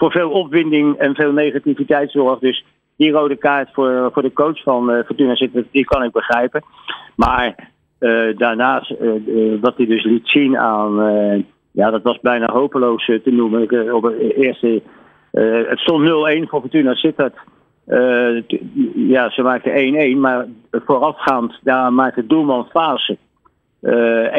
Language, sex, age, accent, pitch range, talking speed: Dutch, male, 50-69, Dutch, 115-135 Hz, 165 wpm